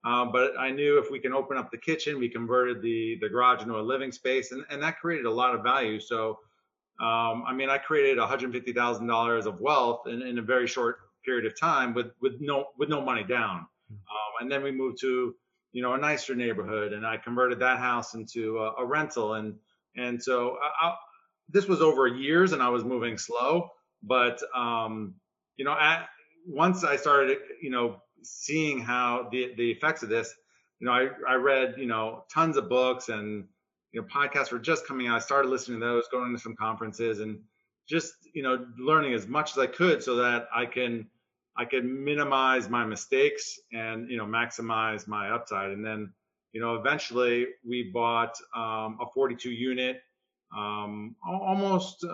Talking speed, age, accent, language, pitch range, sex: 195 wpm, 40-59, American, English, 115-140 Hz, male